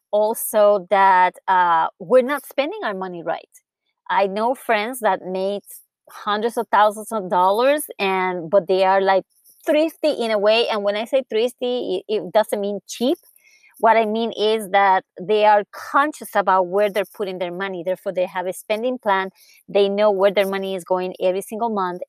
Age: 30-49